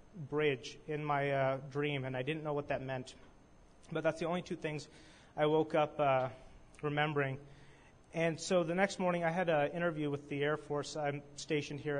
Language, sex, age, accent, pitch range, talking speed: English, male, 30-49, American, 145-165 Hz, 195 wpm